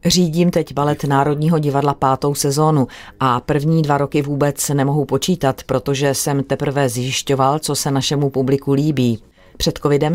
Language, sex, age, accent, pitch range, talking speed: Czech, female, 30-49, native, 135-155 Hz, 150 wpm